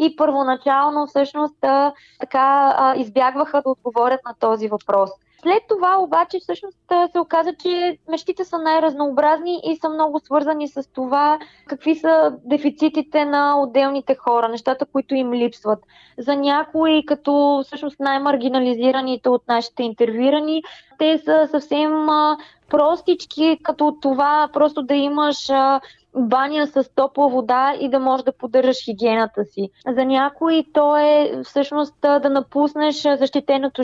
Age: 20-39